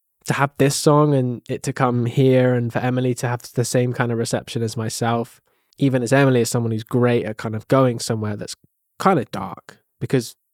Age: 20-39